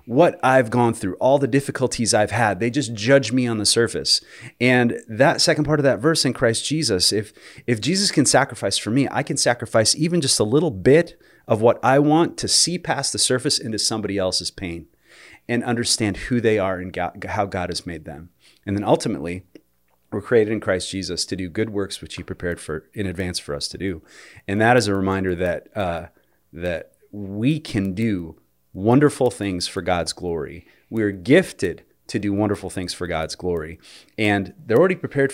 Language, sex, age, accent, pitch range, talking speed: English, male, 30-49, American, 95-125 Hz, 200 wpm